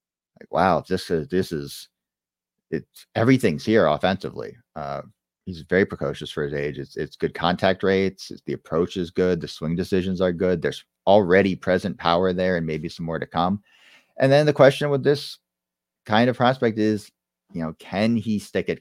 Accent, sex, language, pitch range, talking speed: American, male, English, 85-110 Hz, 190 wpm